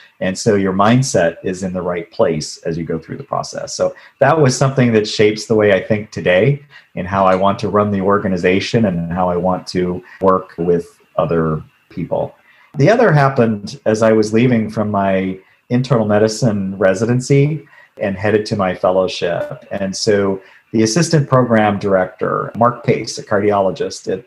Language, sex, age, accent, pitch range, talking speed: English, male, 40-59, American, 95-120 Hz, 175 wpm